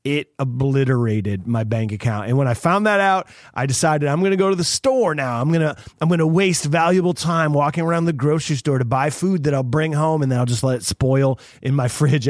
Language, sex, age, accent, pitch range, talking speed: English, male, 30-49, American, 135-175 Hz, 240 wpm